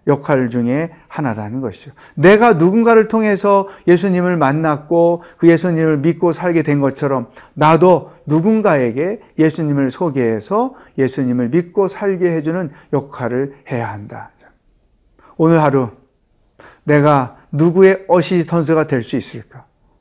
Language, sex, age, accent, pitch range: Korean, male, 40-59, native, 135-190 Hz